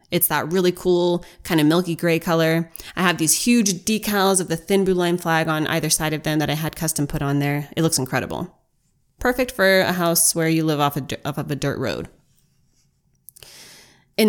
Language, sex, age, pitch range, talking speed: English, female, 20-39, 145-180 Hz, 200 wpm